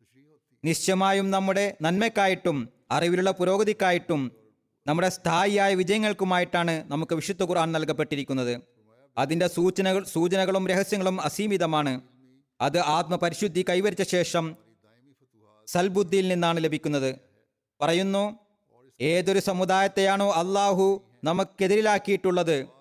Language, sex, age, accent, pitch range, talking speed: Malayalam, male, 30-49, native, 140-195 Hz, 75 wpm